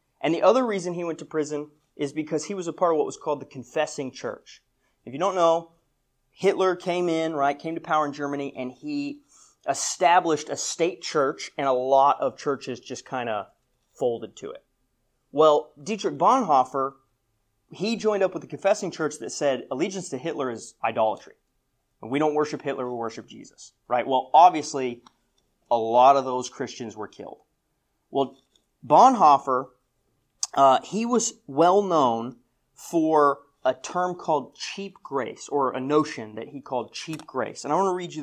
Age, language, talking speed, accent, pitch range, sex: 30-49, English, 175 wpm, American, 135-190 Hz, male